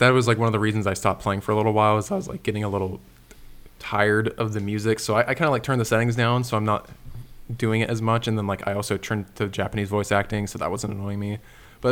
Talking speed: 290 wpm